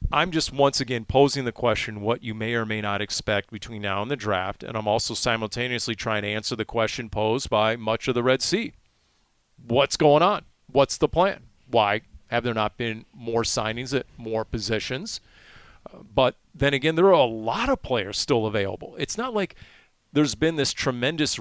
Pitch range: 110-155 Hz